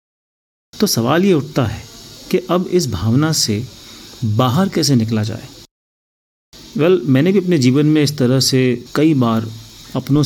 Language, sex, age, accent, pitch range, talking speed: Hindi, male, 30-49, native, 120-150 Hz, 150 wpm